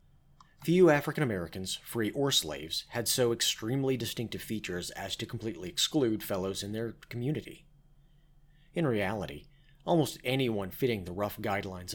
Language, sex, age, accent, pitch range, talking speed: English, male, 30-49, American, 95-140 Hz, 135 wpm